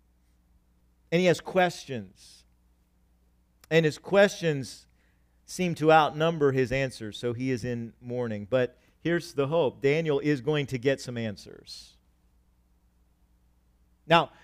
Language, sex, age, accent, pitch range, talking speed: English, male, 50-69, American, 120-175 Hz, 120 wpm